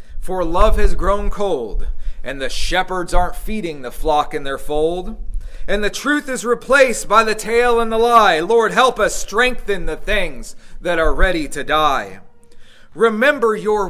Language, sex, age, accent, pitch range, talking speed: English, male, 40-59, American, 195-270 Hz, 170 wpm